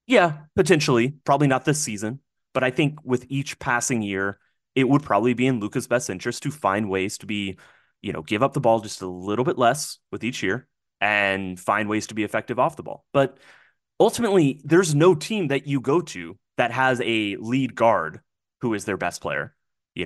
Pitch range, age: 100-130 Hz, 30-49